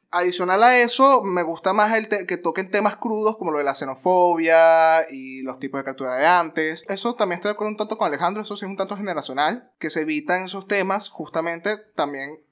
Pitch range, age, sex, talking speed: 160-220 Hz, 20-39, male, 220 wpm